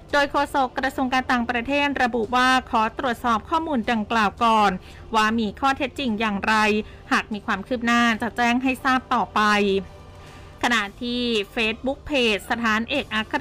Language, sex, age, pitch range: Thai, female, 20-39, 220-260 Hz